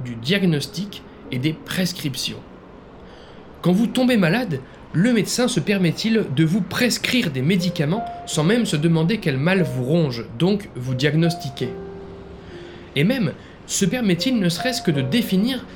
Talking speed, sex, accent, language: 145 wpm, male, French, French